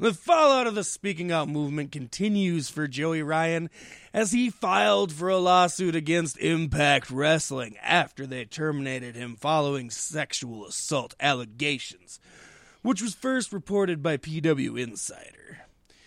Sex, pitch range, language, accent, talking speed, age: male, 135-180 Hz, English, American, 130 wpm, 20-39